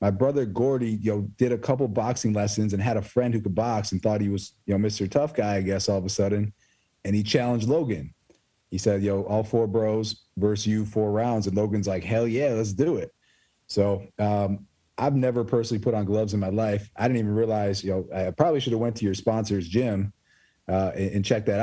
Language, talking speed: English, 235 wpm